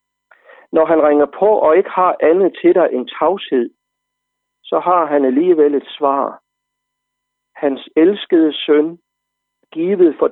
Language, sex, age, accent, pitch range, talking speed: Danish, male, 60-79, native, 125-205 Hz, 135 wpm